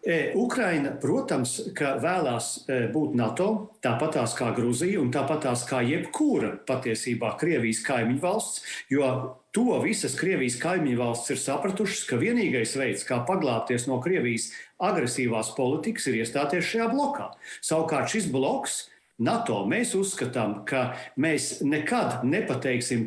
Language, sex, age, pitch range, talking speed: English, male, 50-69, 125-195 Hz, 120 wpm